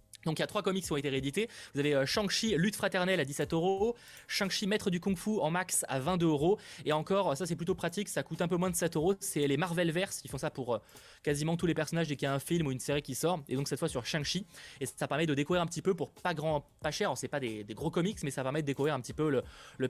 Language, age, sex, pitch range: French, 20-39, male, 140-180 Hz